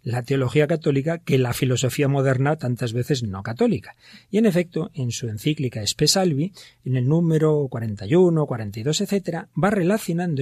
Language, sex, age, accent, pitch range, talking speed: Spanish, male, 40-59, Spanish, 125-160 Hz, 150 wpm